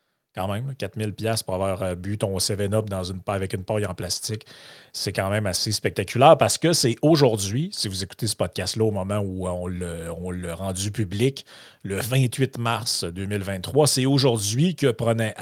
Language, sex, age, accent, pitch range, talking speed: French, male, 30-49, Canadian, 95-120 Hz, 190 wpm